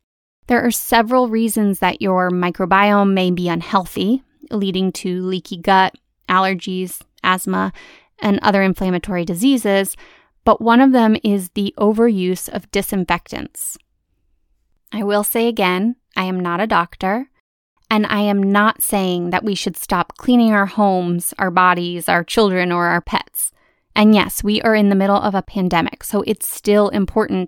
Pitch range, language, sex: 185-225 Hz, English, female